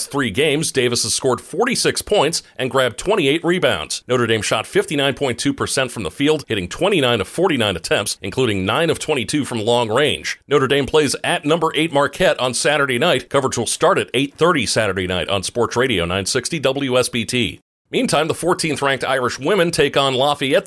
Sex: male